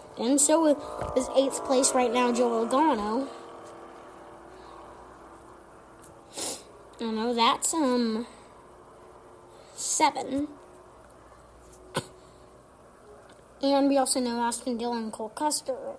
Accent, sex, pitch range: American, female, 235-295 Hz